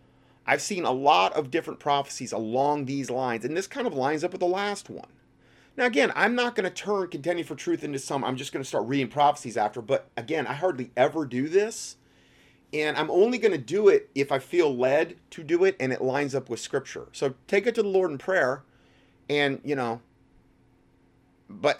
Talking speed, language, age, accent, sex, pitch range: 215 wpm, English, 30-49, American, male, 120-145 Hz